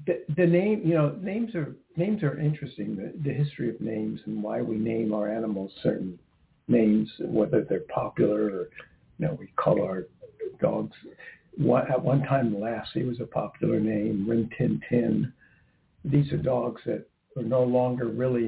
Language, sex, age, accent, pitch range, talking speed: English, male, 60-79, American, 115-150 Hz, 170 wpm